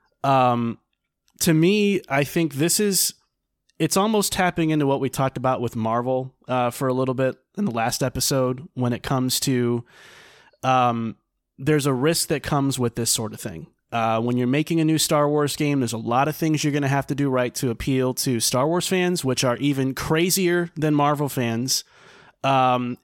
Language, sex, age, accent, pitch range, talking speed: English, male, 20-39, American, 125-155 Hz, 200 wpm